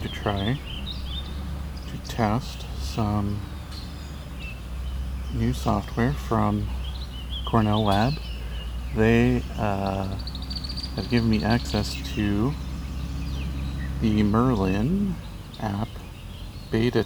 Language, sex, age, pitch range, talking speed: English, male, 40-59, 75-110 Hz, 75 wpm